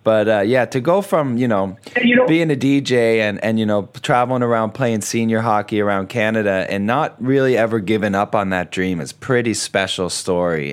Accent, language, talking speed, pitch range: American, English, 200 wpm, 100-120 Hz